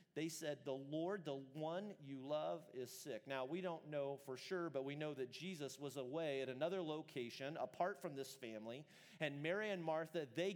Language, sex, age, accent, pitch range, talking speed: English, male, 40-59, American, 125-170 Hz, 200 wpm